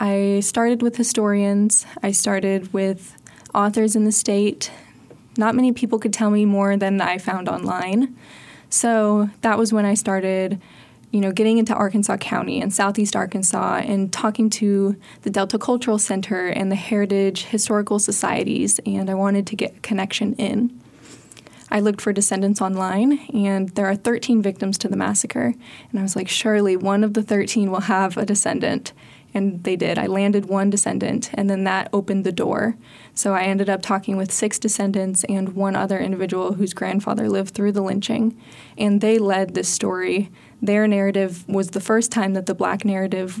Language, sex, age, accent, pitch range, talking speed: English, female, 20-39, American, 195-215 Hz, 180 wpm